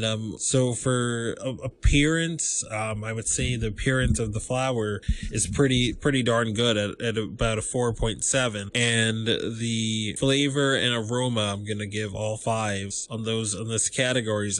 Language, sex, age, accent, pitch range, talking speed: English, male, 20-39, American, 105-125 Hz, 155 wpm